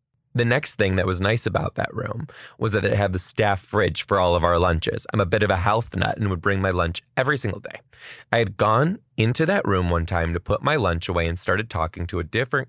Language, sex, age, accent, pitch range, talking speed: English, male, 20-39, American, 95-140 Hz, 260 wpm